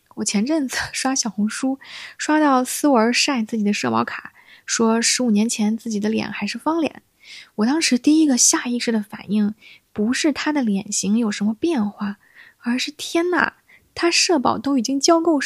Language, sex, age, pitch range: Chinese, female, 20-39, 215-280 Hz